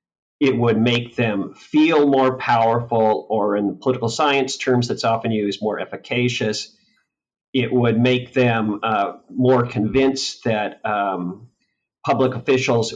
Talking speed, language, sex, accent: 135 wpm, English, male, American